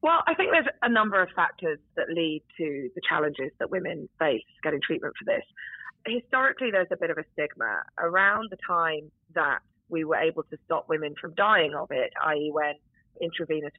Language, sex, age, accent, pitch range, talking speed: English, female, 20-39, British, 155-200 Hz, 190 wpm